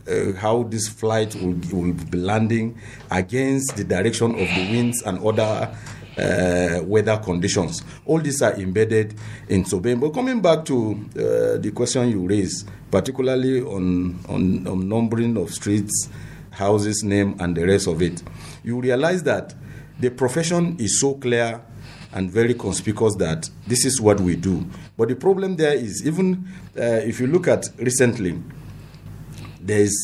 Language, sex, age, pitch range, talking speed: English, male, 50-69, 95-130 Hz, 155 wpm